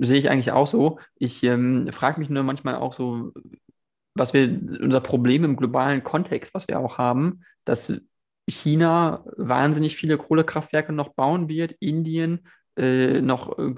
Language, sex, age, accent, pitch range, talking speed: German, male, 20-39, German, 130-155 Hz, 155 wpm